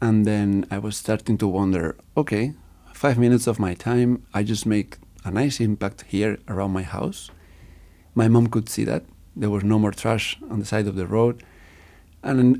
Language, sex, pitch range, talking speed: English, male, 95-120 Hz, 190 wpm